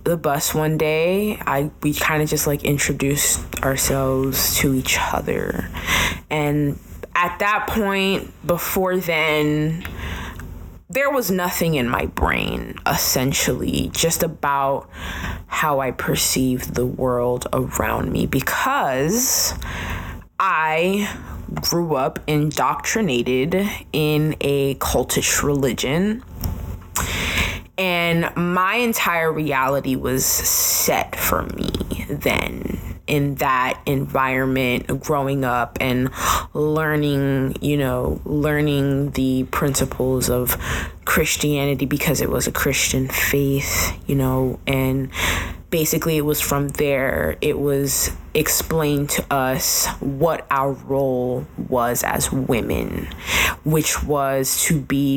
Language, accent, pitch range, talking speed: English, American, 125-155 Hz, 105 wpm